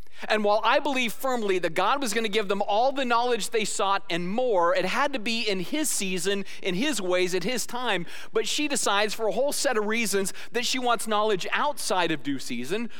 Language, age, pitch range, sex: English, 40-59, 170-225 Hz, male